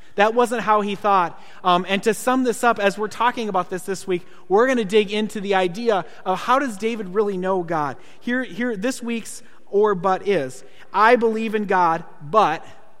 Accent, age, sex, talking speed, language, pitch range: American, 30-49, male, 205 wpm, English, 180-230 Hz